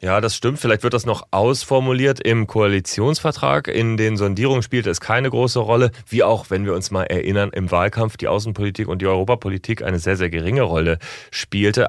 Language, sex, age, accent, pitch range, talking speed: German, male, 30-49, German, 95-115 Hz, 190 wpm